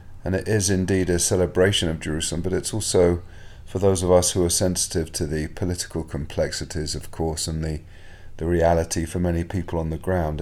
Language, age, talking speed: English, 40-59, 195 wpm